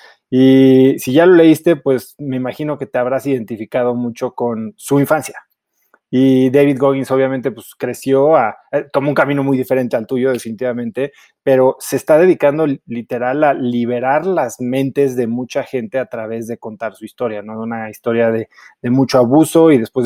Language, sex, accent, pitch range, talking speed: Spanish, male, Mexican, 120-150 Hz, 175 wpm